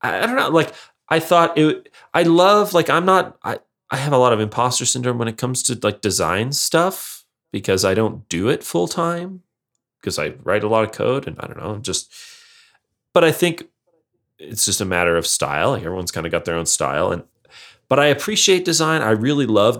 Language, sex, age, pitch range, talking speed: English, male, 30-49, 95-135 Hz, 220 wpm